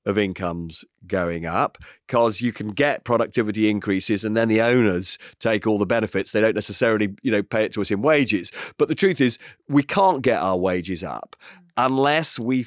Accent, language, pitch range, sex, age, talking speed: British, English, 110-145 Hz, male, 40-59, 195 wpm